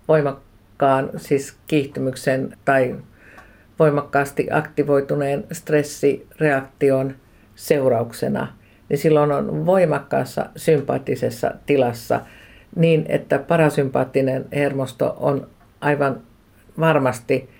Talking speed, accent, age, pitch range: 70 wpm, native, 50-69, 125-155 Hz